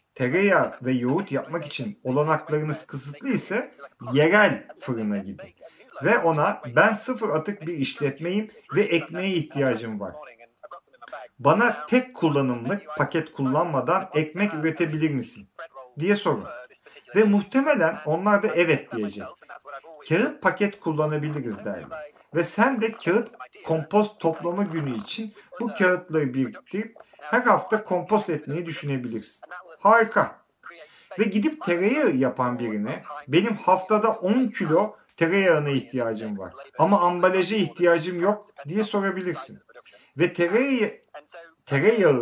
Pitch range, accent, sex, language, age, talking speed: 145-205 Hz, native, male, Turkish, 50-69, 110 wpm